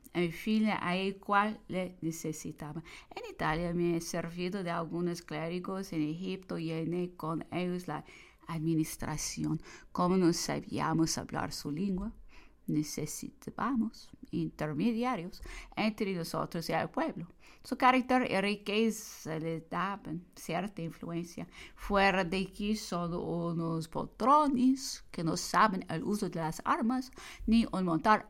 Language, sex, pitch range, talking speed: English, female, 165-225 Hz, 130 wpm